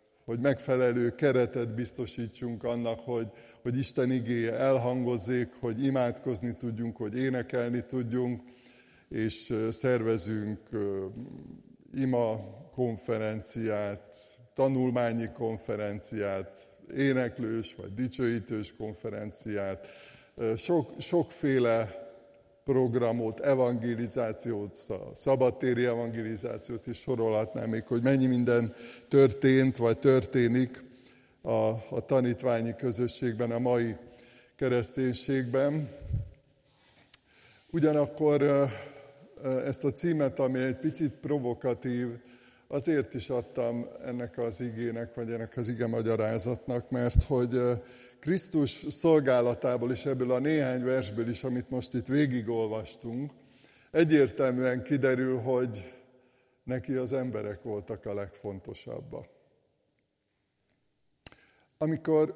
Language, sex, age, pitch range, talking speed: Hungarian, male, 50-69, 115-130 Hz, 85 wpm